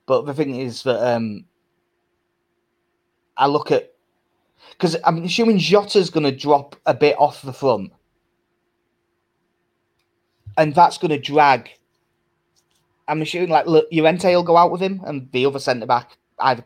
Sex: male